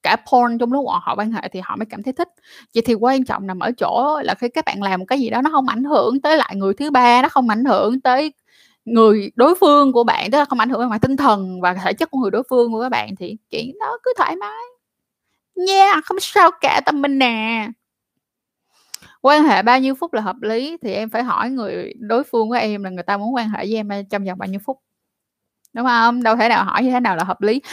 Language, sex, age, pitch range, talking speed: Vietnamese, female, 10-29, 220-290 Hz, 260 wpm